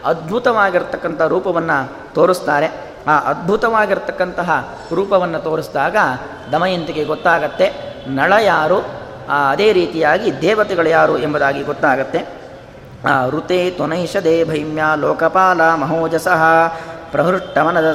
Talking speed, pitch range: 80 wpm, 160-205 Hz